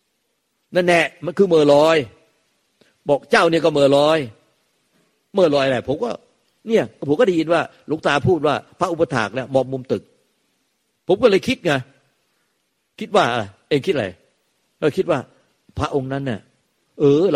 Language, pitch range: Thai, 140-185 Hz